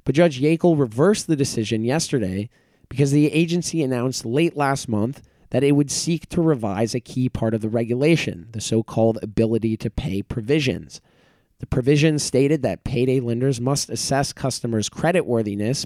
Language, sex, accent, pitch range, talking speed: English, male, American, 120-155 Hz, 160 wpm